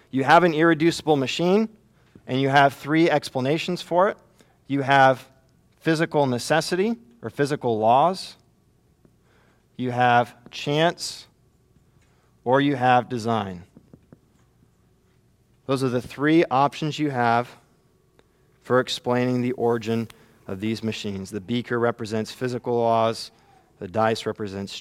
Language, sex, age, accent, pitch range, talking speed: English, male, 40-59, American, 110-130 Hz, 115 wpm